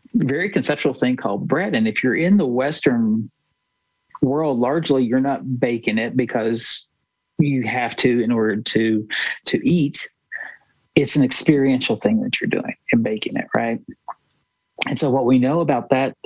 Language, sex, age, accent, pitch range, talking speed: English, male, 50-69, American, 115-135 Hz, 160 wpm